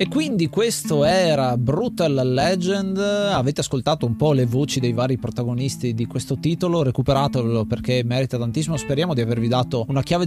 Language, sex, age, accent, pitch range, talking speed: Italian, male, 20-39, native, 120-150 Hz, 165 wpm